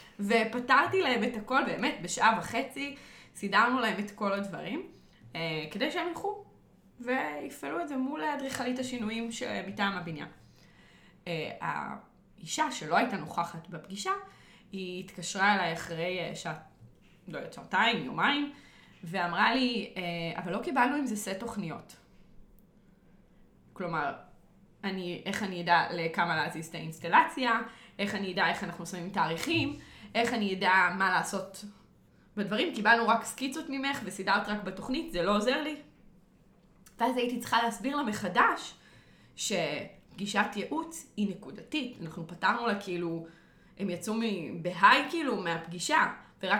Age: 20-39